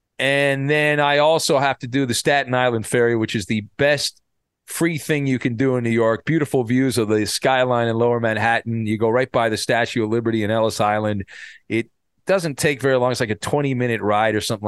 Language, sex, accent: English, male, American